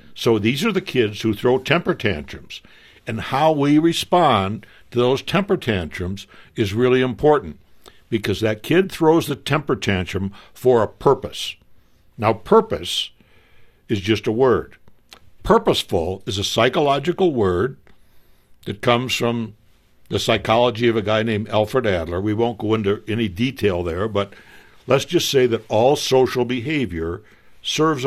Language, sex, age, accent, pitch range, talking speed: English, male, 60-79, American, 100-130 Hz, 145 wpm